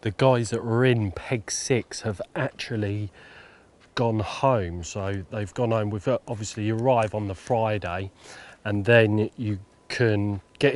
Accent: British